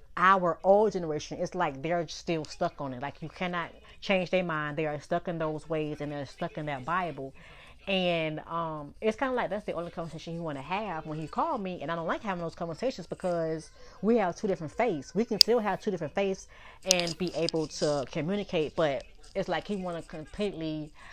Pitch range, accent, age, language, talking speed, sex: 160-205 Hz, American, 20-39, English, 220 wpm, female